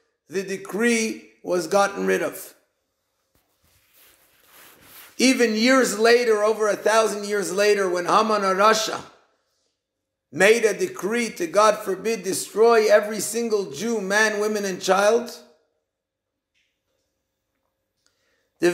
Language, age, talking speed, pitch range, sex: English, 50-69, 100 wpm, 200-235 Hz, male